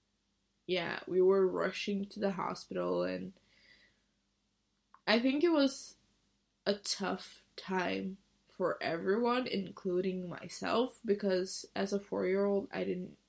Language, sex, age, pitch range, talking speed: English, female, 20-39, 180-205 Hz, 115 wpm